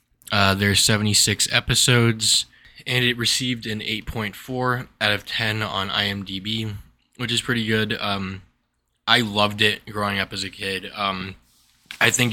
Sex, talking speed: male, 150 wpm